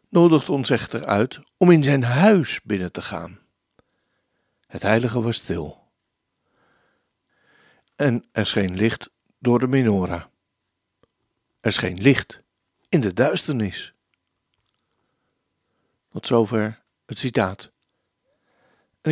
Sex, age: male, 60-79